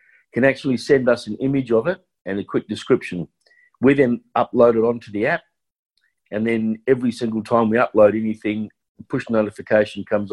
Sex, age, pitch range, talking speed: male, 50-69, 105-125 Hz, 180 wpm